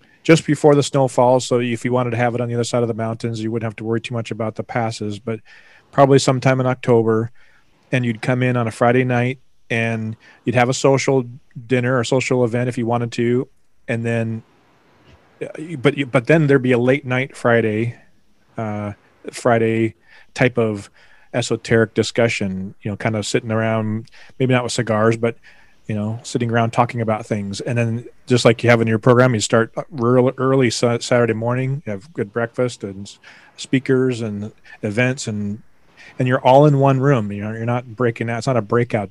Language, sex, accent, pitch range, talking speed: English, male, American, 110-125 Hz, 200 wpm